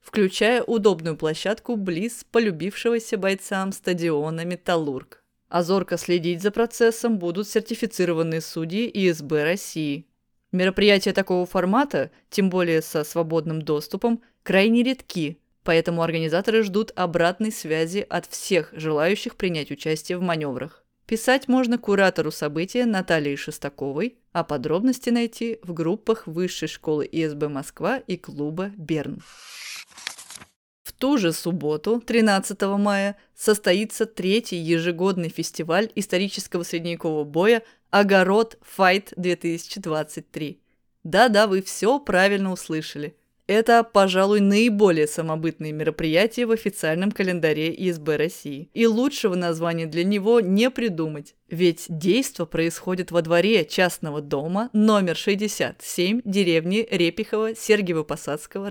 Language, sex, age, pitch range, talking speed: Russian, female, 20-39, 165-215 Hz, 110 wpm